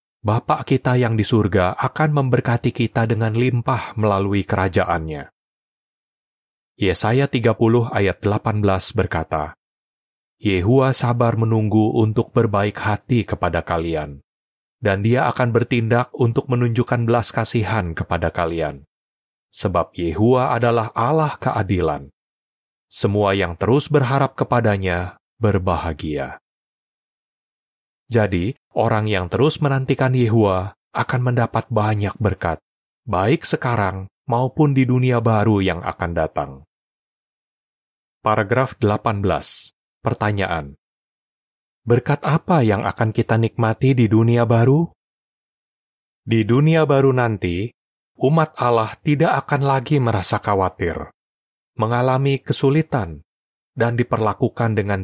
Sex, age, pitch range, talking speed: male, 30-49, 100-125 Hz, 100 wpm